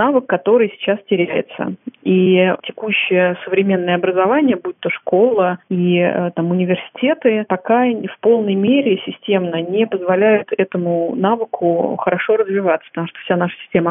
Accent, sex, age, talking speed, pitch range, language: native, female, 30-49, 125 wpm, 180-210 Hz, Russian